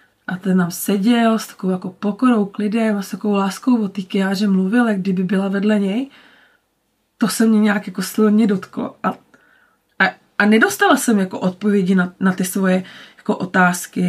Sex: female